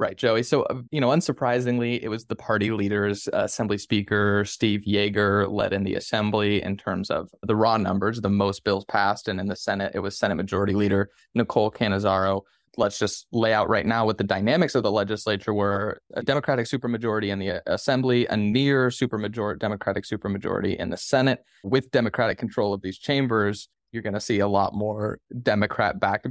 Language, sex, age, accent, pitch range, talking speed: English, male, 20-39, American, 100-115 Hz, 185 wpm